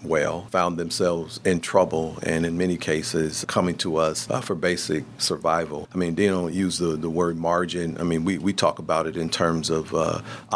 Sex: male